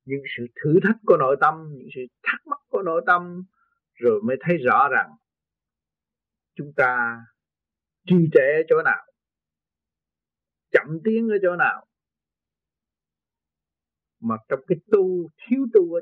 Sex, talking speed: male, 140 wpm